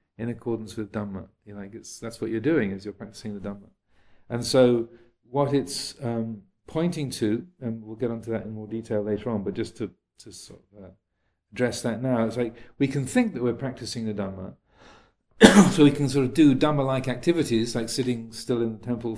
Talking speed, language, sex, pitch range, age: 215 wpm, English, male, 105-125 Hz, 40-59